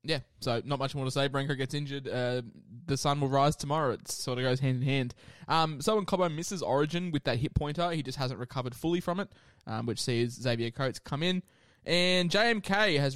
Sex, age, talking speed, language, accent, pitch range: male, 20-39, 230 wpm, English, Australian, 120-150 Hz